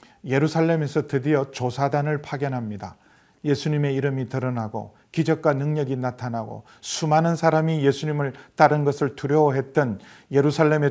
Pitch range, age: 125-160 Hz, 40-59